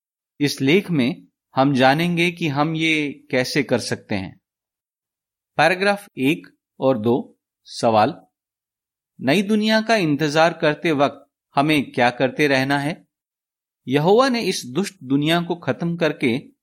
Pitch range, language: 140-190 Hz, Hindi